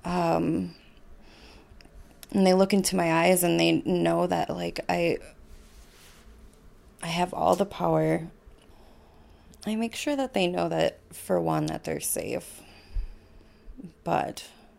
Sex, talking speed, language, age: female, 125 wpm, English, 20-39